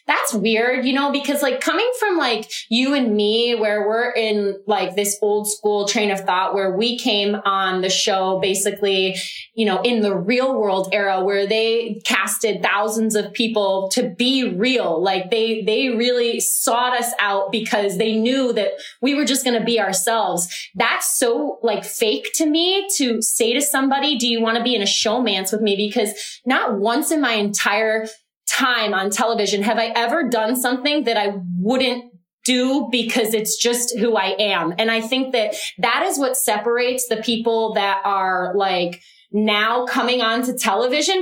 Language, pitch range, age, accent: English, 210-255 Hz, 20-39, American